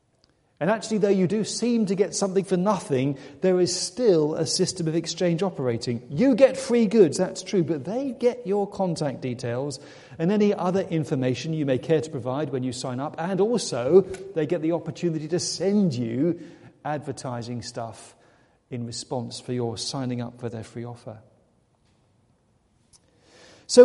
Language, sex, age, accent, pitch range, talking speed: English, male, 40-59, British, 125-180 Hz, 165 wpm